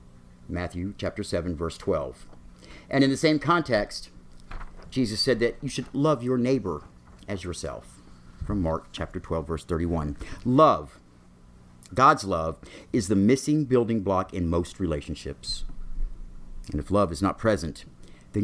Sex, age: male, 50-69